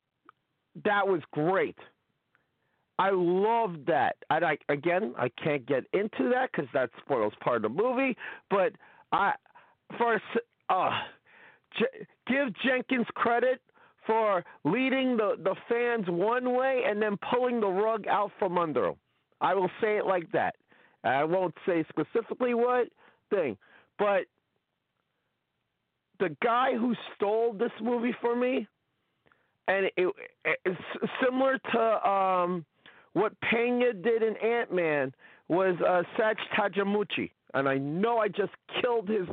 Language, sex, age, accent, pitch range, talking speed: English, male, 50-69, American, 190-245 Hz, 135 wpm